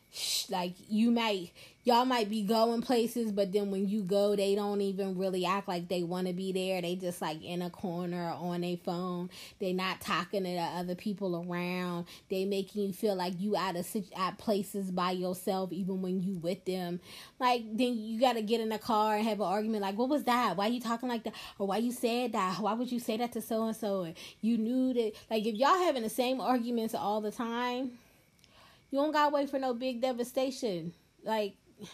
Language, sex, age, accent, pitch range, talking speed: English, female, 10-29, American, 195-250 Hz, 225 wpm